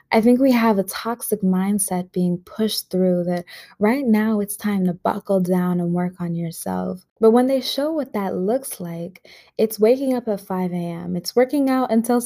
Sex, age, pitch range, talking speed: female, 20-39, 180-225 Hz, 195 wpm